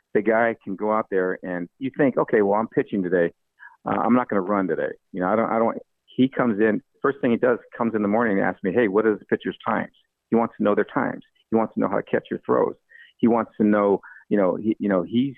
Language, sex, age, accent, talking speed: English, male, 50-69, American, 280 wpm